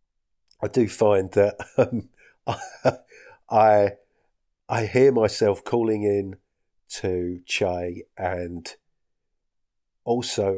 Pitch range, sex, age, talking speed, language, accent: 95-110 Hz, male, 40-59, 85 wpm, English, British